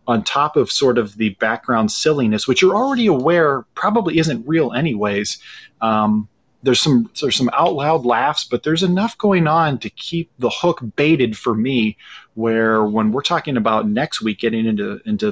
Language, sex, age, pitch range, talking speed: English, male, 30-49, 110-160 Hz, 180 wpm